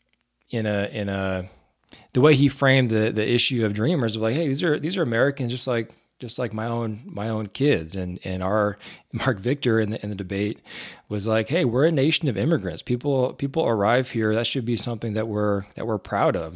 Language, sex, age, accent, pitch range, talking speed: English, male, 20-39, American, 95-120 Hz, 225 wpm